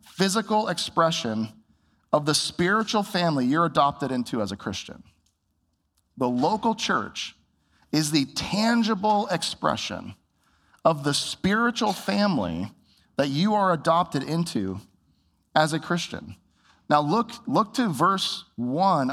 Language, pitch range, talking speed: English, 110-180 Hz, 115 wpm